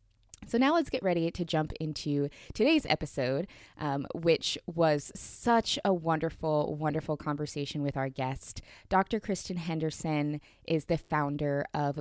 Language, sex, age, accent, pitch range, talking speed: English, female, 20-39, American, 140-175 Hz, 140 wpm